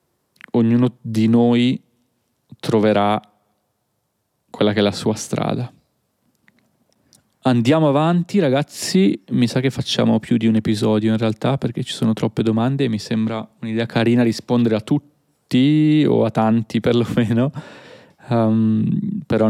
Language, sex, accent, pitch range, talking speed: Italian, male, native, 110-145 Hz, 125 wpm